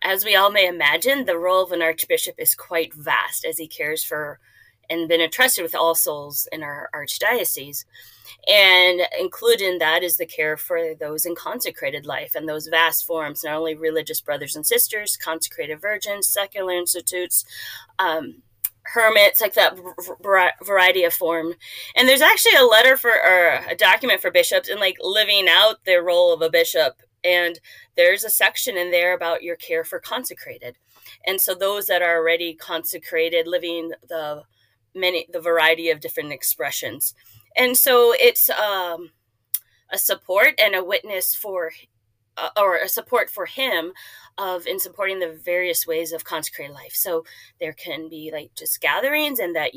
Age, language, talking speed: 20-39, English, 165 wpm